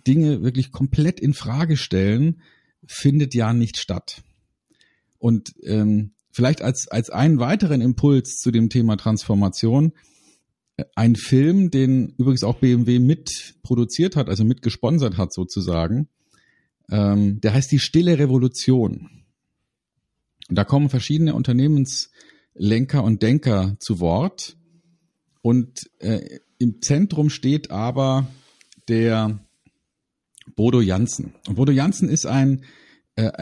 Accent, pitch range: German, 110-145 Hz